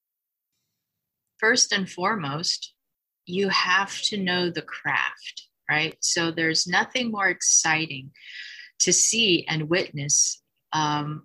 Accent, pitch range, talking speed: American, 165-225 Hz, 105 wpm